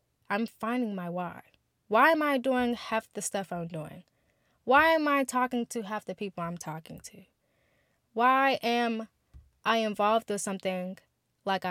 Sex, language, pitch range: female, English, 185-225 Hz